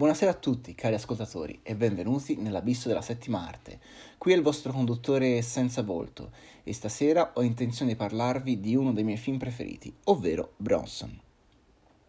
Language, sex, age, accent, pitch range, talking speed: Italian, male, 30-49, native, 110-130 Hz, 160 wpm